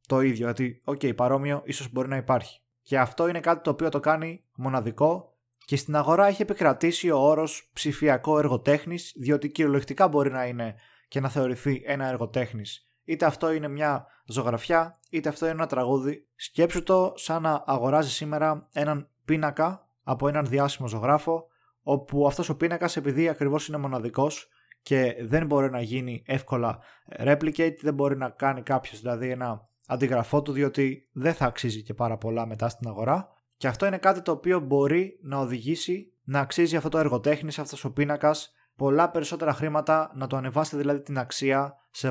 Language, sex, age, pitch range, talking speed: Greek, male, 20-39, 130-155 Hz, 170 wpm